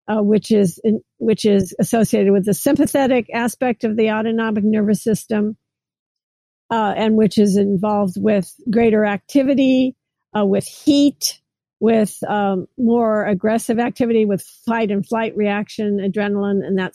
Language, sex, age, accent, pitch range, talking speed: English, female, 50-69, American, 205-235 Hz, 135 wpm